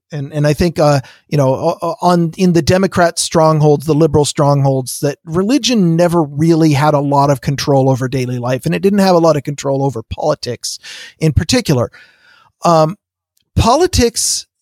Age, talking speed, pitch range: 40-59, 170 wpm, 135-175 Hz